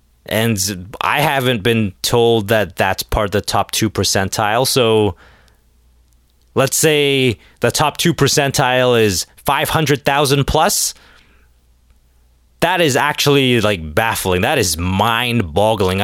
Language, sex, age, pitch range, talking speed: English, male, 20-39, 95-140 Hz, 120 wpm